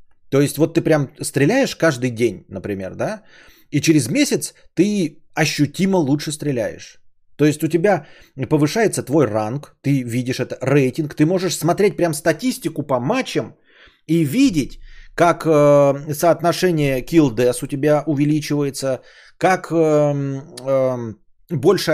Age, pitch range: 20-39, 135-170 Hz